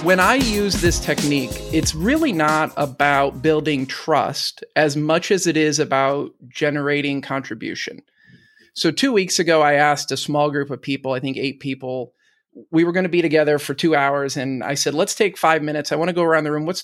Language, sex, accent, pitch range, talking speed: English, male, American, 145-185 Hz, 205 wpm